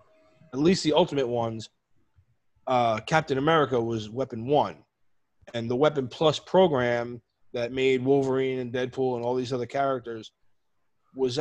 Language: English